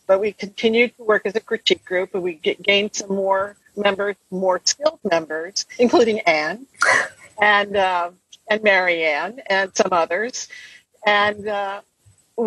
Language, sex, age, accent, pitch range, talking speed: English, female, 50-69, American, 165-215 Hz, 140 wpm